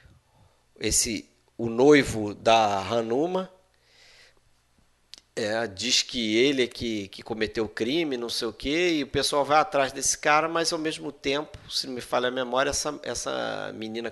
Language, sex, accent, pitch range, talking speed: Portuguese, male, Brazilian, 115-145 Hz, 160 wpm